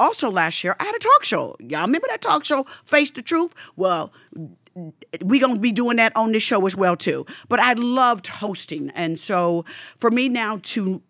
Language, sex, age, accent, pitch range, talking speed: English, female, 50-69, American, 170-235 Hz, 210 wpm